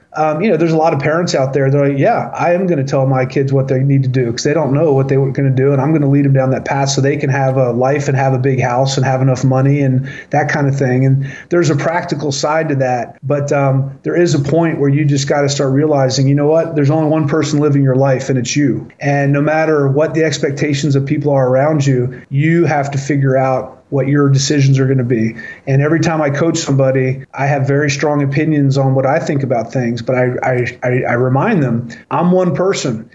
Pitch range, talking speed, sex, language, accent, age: 135-155 Hz, 260 wpm, male, English, American, 30-49